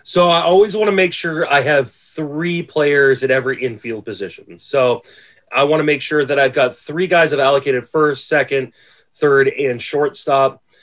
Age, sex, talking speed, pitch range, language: 30-49, male, 190 wpm, 120-150 Hz, English